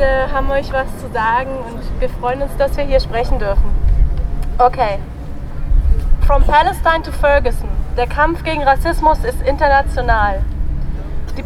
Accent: German